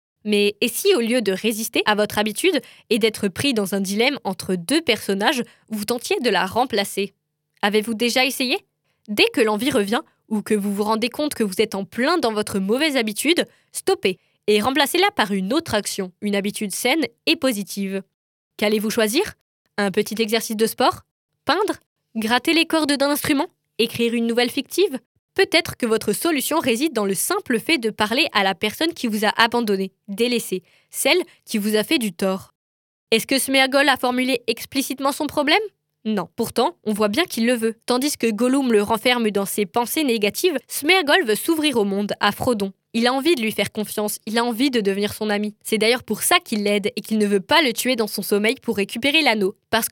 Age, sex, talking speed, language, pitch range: 20-39, female, 200 wpm, French, 210-275 Hz